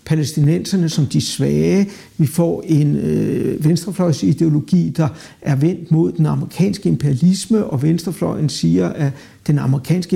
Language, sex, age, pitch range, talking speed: Danish, male, 60-79, 155-195 Hz, 130 wpm